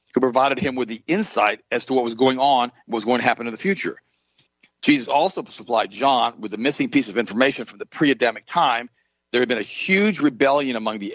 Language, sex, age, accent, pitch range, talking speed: English, male, 50-69, American, 110-135 Hz, 225 wpm